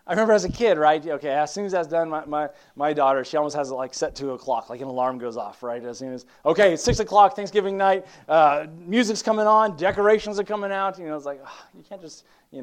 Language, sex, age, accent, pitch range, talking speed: English, male, 30-49, American, 125-180 Hz, 265 wpm